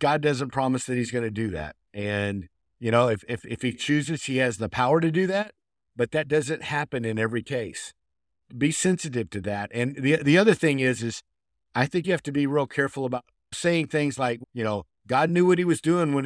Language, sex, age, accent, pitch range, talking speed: English, male, 50-69, American, 115-145 Hz, 235 wpm